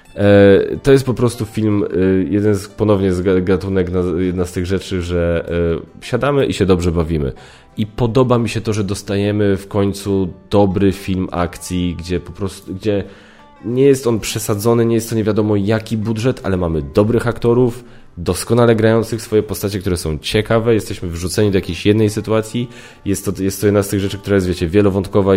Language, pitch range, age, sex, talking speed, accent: Polish, 90-110 Hz, 20-39, male, 180 wpm, native